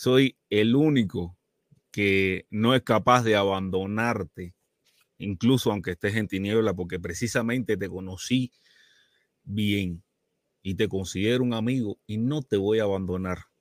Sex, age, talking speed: male, 30-49, 130 wpm